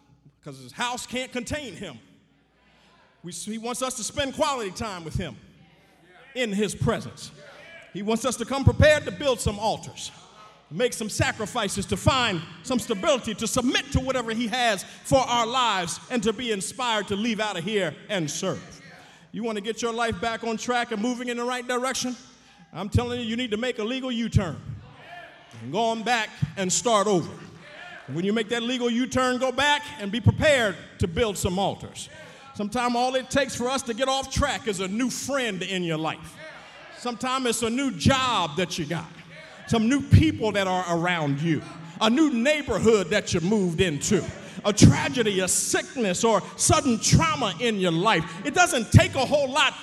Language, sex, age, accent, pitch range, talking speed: English, male, 50-69, American, 185-250 Hz, 190 wpm